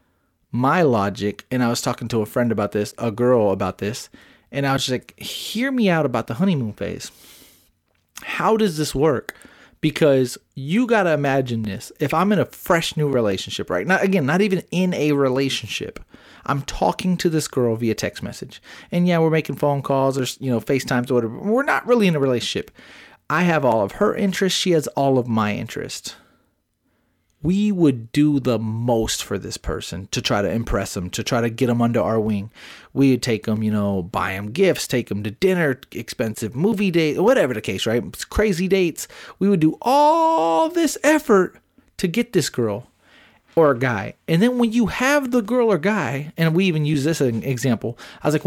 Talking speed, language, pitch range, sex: 205 wpm, English, 120-185 Hz, male